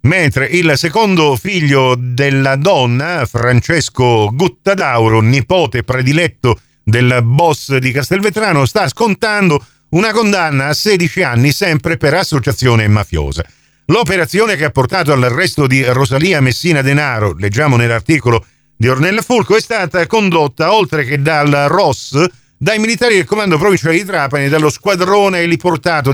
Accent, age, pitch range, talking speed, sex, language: native, 50-69, 120-180 Hz, 130 wpm, male, Italian